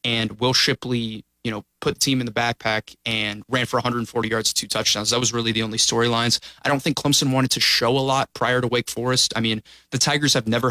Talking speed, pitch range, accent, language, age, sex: 240 wpm, 115-135 Hz, American, English, 20-39, male